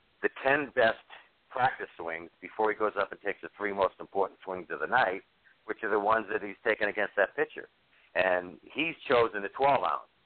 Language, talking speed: English, 205 wpm